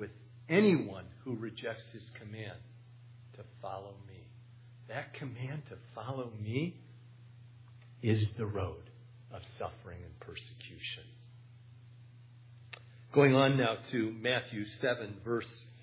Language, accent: English, American